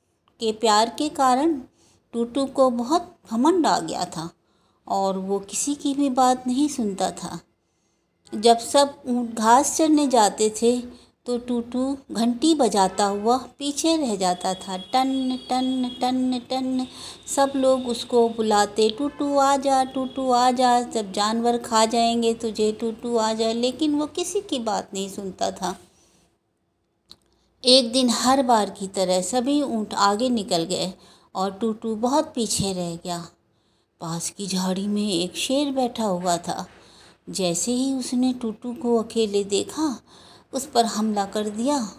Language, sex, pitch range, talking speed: Hindi, female, 200-265 Hz, 145 wpm